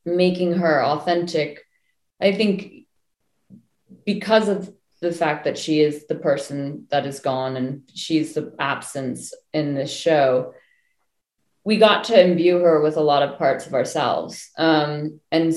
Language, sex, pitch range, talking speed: English, female, 150-195 Hz, 145 wpm